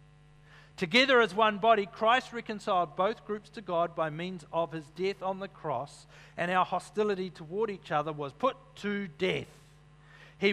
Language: English